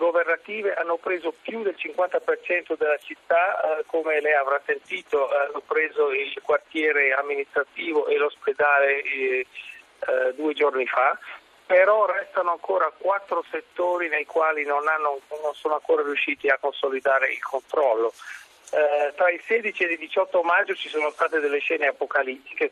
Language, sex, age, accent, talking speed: Italian, male, 40-59, native, 150 wpm